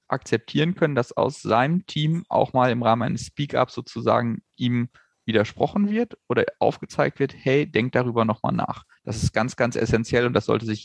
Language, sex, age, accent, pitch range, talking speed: German, male, 30-49, German, 115-150 Hz, 185 wpm